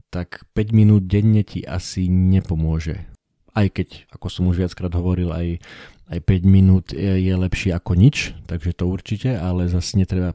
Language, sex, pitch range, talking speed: Slovak, male, 85-100 Hz, 170 wpm